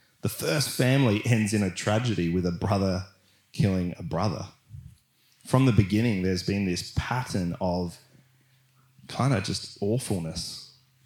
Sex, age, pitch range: male, 20-39, 95-125 Hz